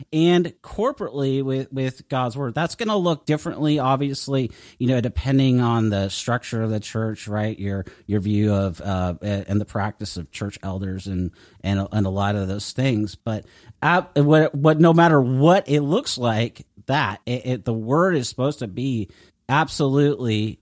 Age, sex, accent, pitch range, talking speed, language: 40-59, male, American, 105-140 Hz, 180 wpm, English